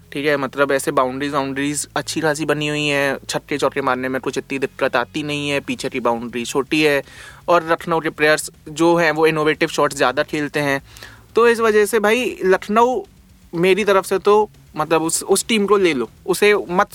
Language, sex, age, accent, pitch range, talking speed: Hindi, male, 20-39, native, 150-225 Hz, 200 wpm